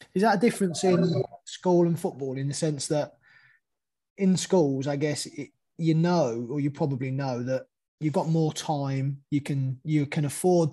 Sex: male